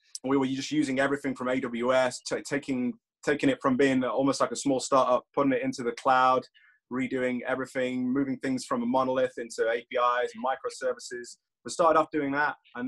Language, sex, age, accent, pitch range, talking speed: English, male, 20-39, British, 120-140 Hz, 180 wpm